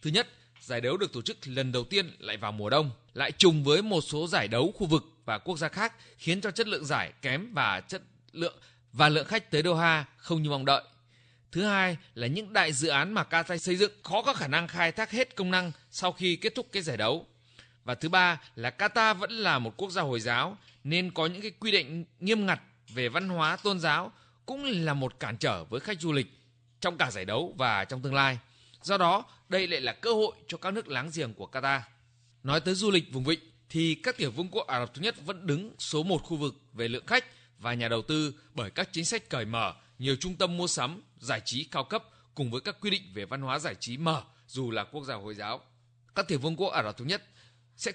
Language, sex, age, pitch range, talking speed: Vietnamese, male, 20-39, 125-185 Hz, 245 wpm